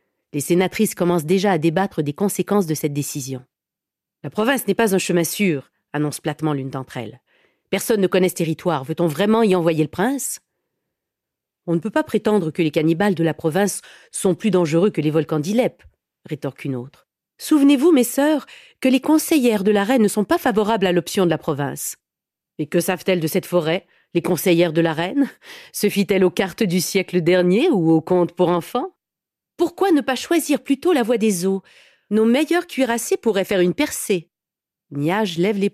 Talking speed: 205 wpm